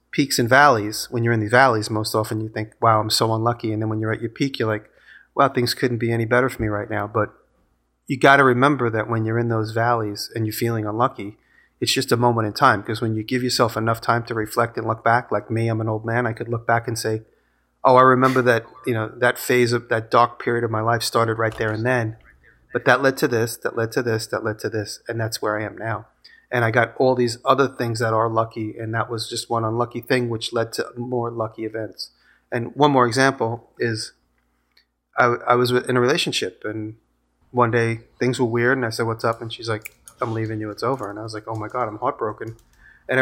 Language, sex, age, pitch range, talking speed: English, male, 30-49, 110-125 Hz, 255 wpm